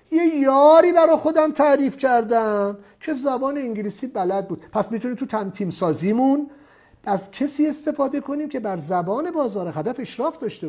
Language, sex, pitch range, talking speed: English, male, 195-285 Hz, 150 wpm